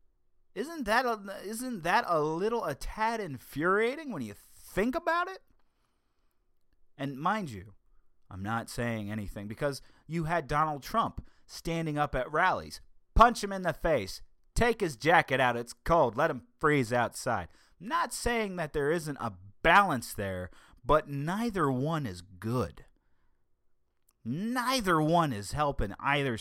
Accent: American